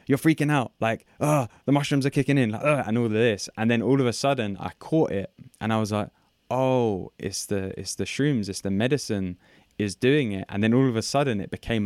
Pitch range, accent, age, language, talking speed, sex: 100-115 Hz, British, 10-29, English, 245 wpm, male